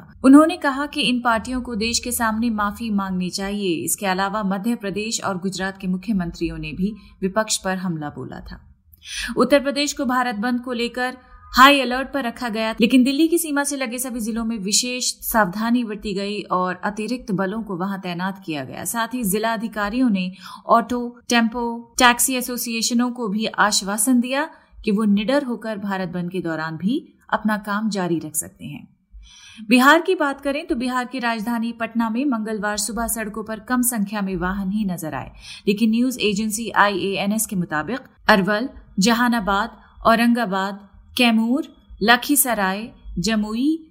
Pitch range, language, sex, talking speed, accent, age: 200-245 Hz, Hindi, female, 165 wpm, native, 30-49